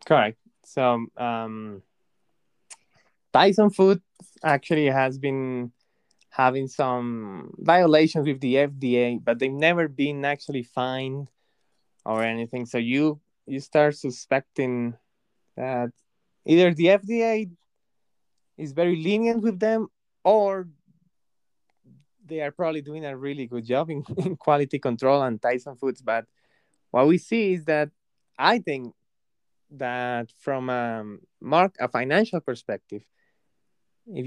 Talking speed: 120 wpm